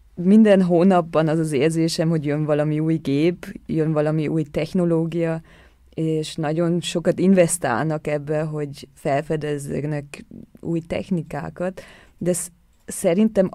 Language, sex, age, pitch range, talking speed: Hungarian, female, 20-39, 150-180 Hz, 115 wpm